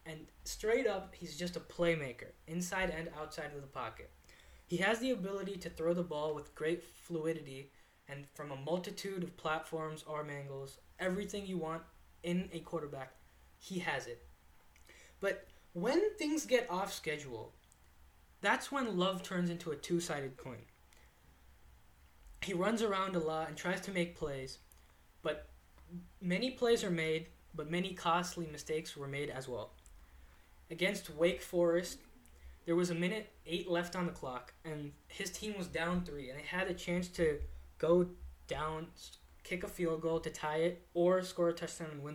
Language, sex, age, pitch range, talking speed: English, male, 20-39, 140-185 Hz, 165 wpm